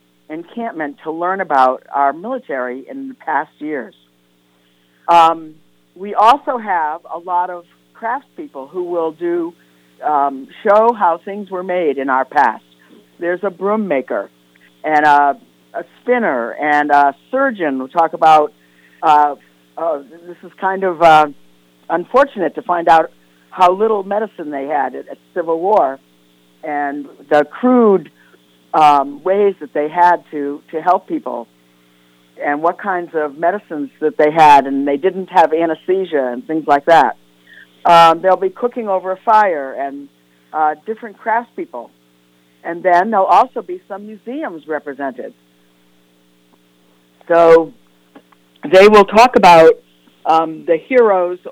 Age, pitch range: 50-69, 120-185 Hz